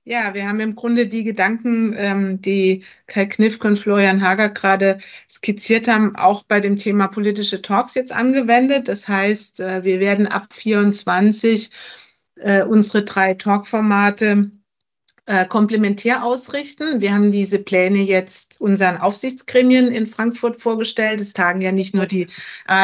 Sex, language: female, German